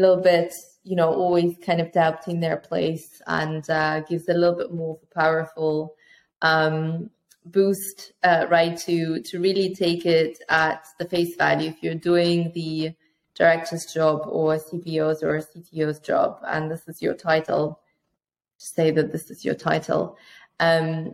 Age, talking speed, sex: 20-39, 165 wpm, female